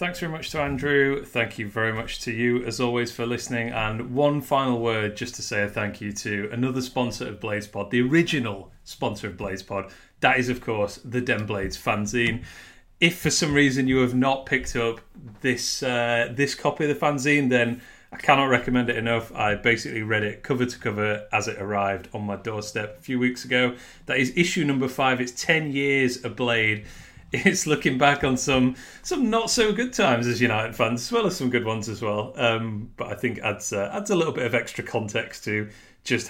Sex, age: male, 30-49